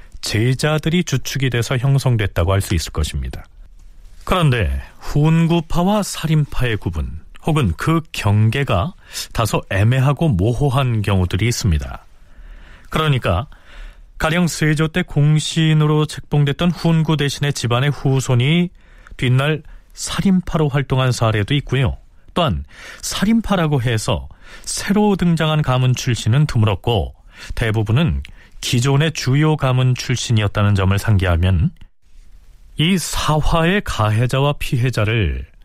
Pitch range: 90-150 Hz